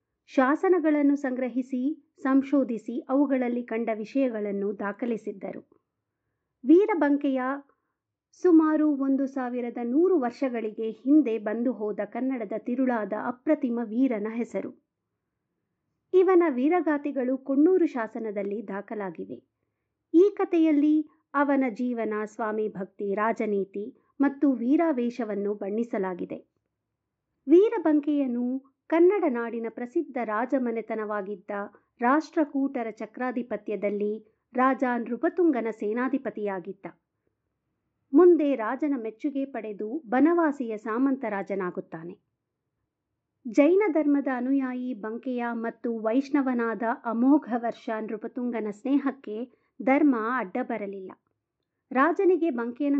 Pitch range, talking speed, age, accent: 220-280 Hz, 75 wpm, 50-69, native